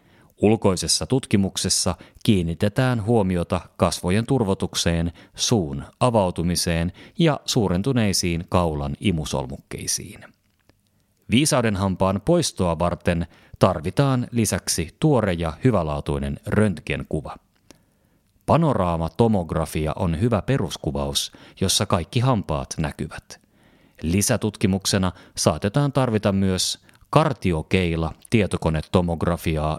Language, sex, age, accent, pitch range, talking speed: Finnish, male, 30-49, native, 80-110 Hz, 75 wpm